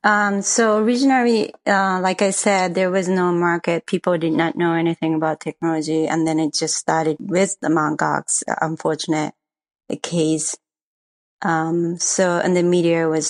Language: English